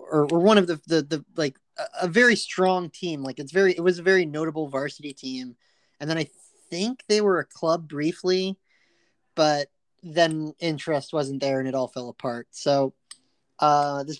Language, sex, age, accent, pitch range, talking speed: English, male, 30-49, American, 135-170 Hz, 180 wpm